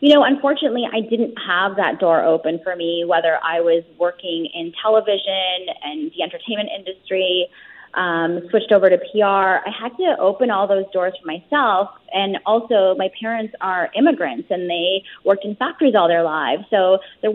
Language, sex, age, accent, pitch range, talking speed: English, female, 20-39, American, 180-235 Hz, 175 wpm